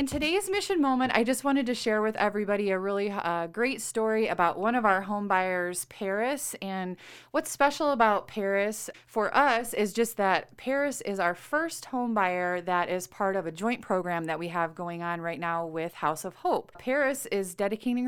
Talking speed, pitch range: 200 wpm, 175-225 Hz